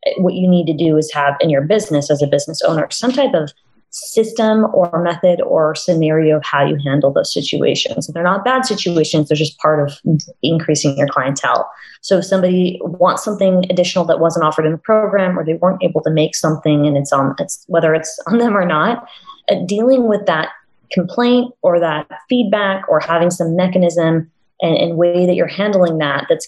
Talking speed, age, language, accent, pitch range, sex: 195 wpm, 20-39, English, American, 150-180 Hz, female